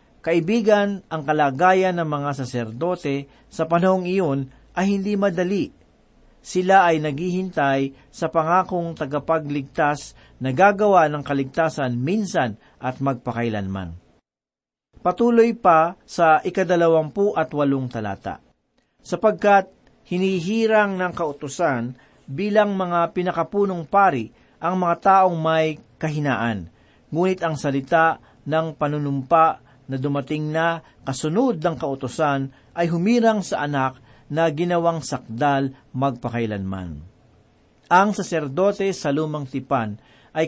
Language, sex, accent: Filipino, male, native